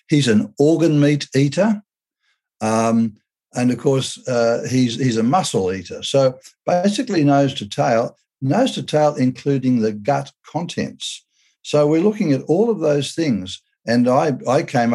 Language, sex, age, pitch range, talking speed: English, male, 60-79, 110-145 Hz, 155 wpm